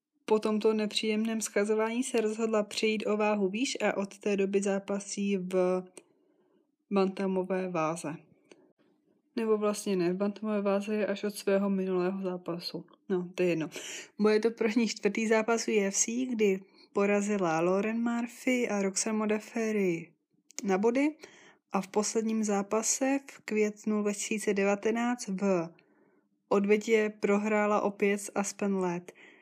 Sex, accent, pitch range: female, native, 195-225 Hz